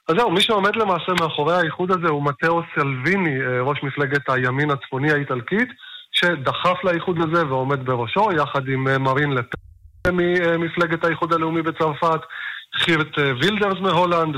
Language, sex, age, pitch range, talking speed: Hebrew, male, 20-39, 140-165 Hz, 135 wpm